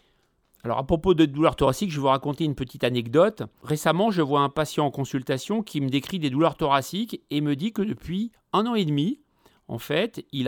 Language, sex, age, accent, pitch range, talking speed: French, male, 40-59, French, 130-170 Hz, 220 wpm